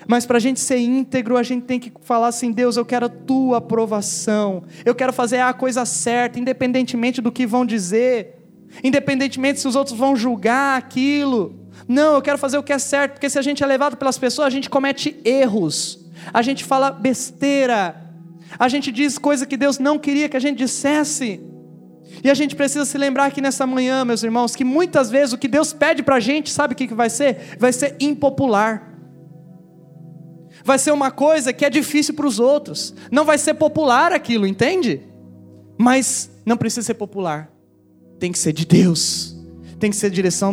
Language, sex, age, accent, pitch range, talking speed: Portuguese, male, 20-39, Brazilian, 215-275 Hz, 195 wpm